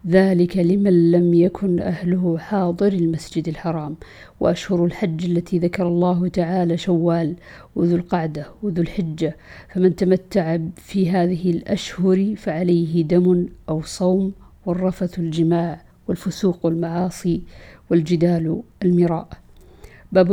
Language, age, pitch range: Arabic, 50-69, 170-190 Hz